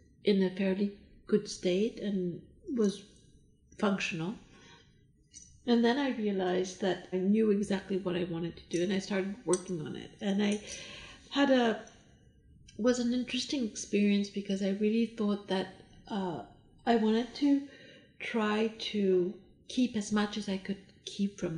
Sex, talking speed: female, 150 wpm